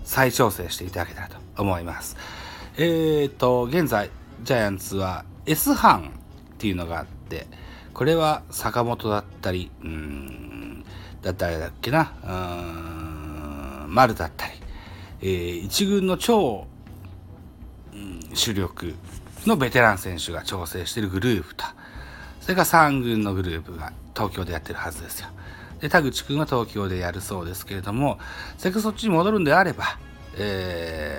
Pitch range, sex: 85-120 Hz, male